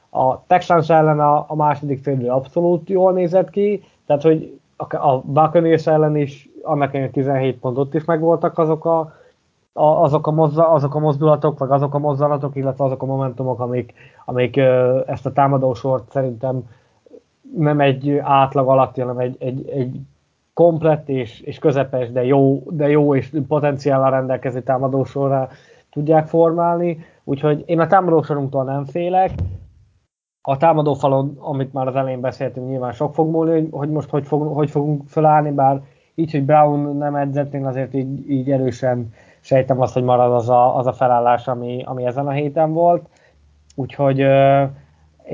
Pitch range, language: 130-155 Hz, Hungarian